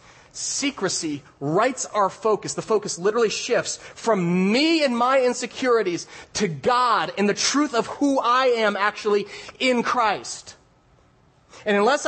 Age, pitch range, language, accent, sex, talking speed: 30-49, 155-230 Hz, English, American, male, 135 wpm